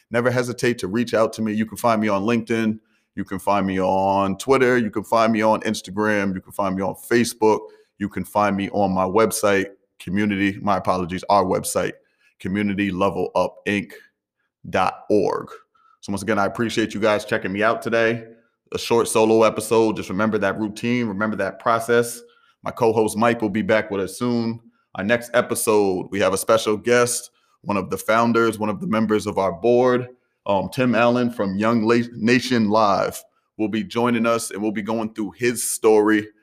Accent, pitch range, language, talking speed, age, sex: American, 105-120 Hz, English, 185 wpm, 30-49, male